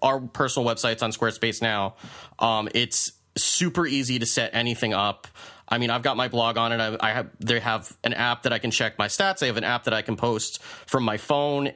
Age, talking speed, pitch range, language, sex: 30-49, 235 wpm, 110-135 Hz, English, male